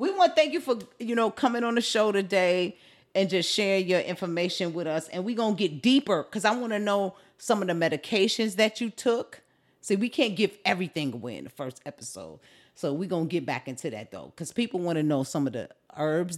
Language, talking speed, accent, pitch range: English, 240 wpm, American, 155-215 Hz